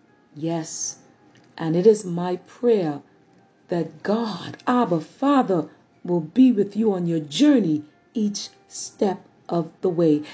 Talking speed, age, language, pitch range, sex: 130 wpm, 40-59, English, 165-235 Hz, female